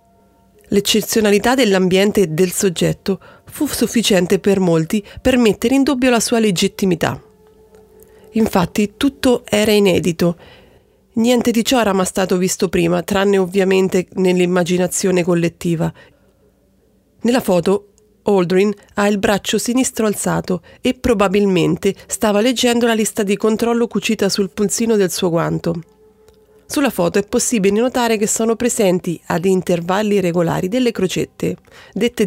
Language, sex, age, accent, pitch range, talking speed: Italian, female, 30-49, native, 185-230 Hz, 125 wpm